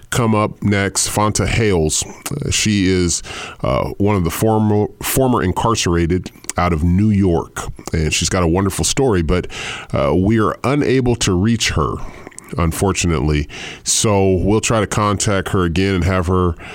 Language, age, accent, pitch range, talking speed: English, 30-49, American, 85-105 Hz, 160 wpm